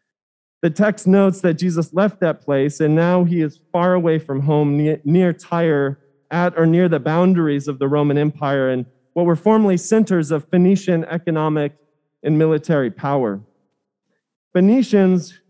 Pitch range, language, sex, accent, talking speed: 150-190 Hz, English, male, American, 150 wpm